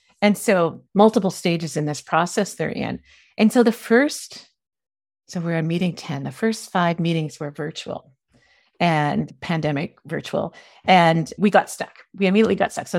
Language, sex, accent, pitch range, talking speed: English, female, American, 165-220 Hz, 165 wpm